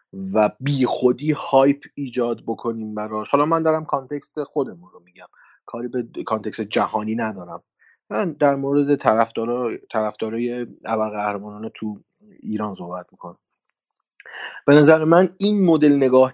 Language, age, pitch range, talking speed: Persian, 30-49, 110-150 Hz, 135 wpm